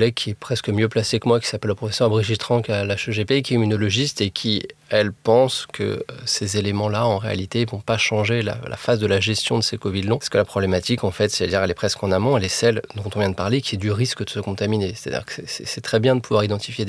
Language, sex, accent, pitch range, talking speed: French, male, French, 105-125 Hz, 275 wpm